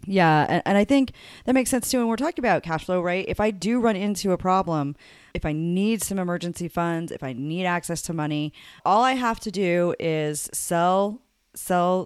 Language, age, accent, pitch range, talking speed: English, 30-49, American, 155-200 Hz, 210 wpm